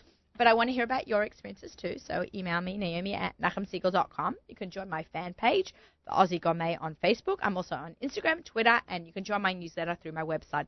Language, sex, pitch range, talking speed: English, female, 180-235 Hz, 225 wpm